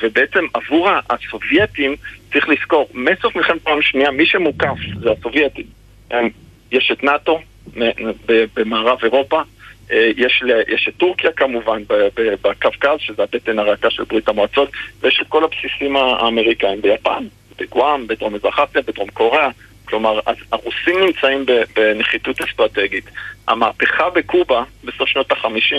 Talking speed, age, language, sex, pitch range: 115 wpm, 50-69, Hebrew, male, 110-155 Hz